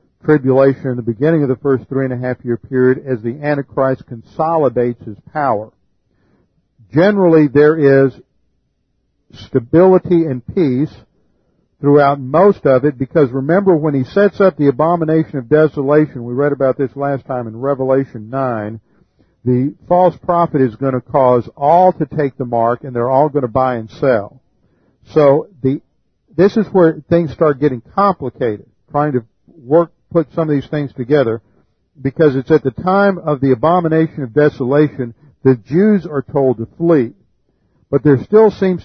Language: English